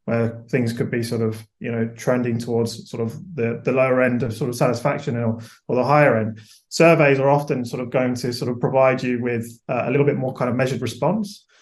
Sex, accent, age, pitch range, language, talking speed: male, British, 20-39, 120-140 Hz, English, 240 wpm